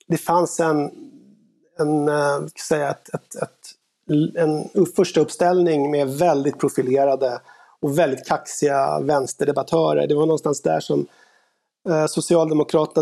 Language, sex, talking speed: Swedish, male, 100 wpm